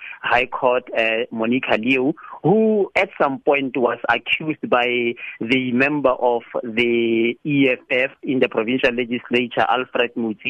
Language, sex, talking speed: English, male, 130 wpm